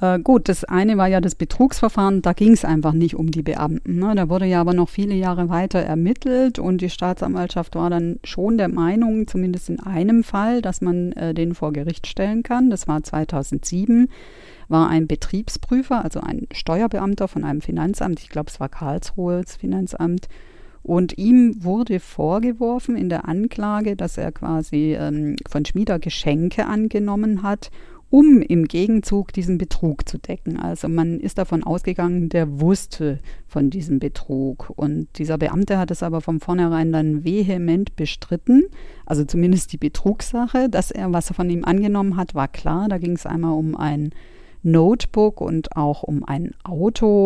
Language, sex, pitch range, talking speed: German, female, 160-200 Hz, 165 wpm